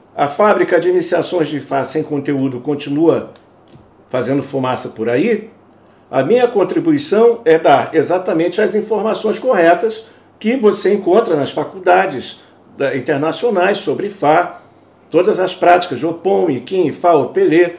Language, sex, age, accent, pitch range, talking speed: Portuguese, male, 60-79, Brazilian, 165-230 Hz, 130 wpm